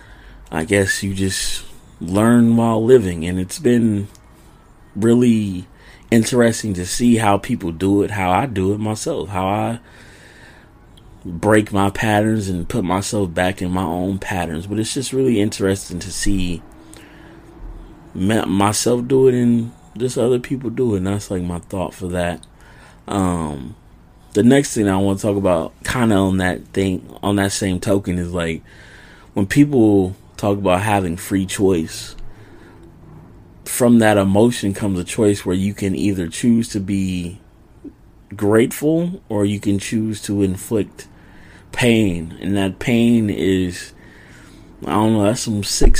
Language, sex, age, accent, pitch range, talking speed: English, male, 30-49, American, 95-115 Hz, 155 wpm